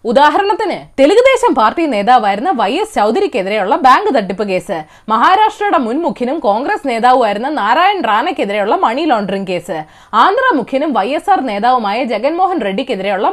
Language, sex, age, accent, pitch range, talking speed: Malayalam, female, 20-39, native, 235-370 Hz, 115 wpm